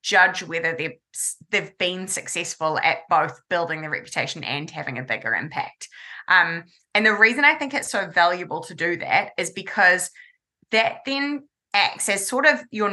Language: English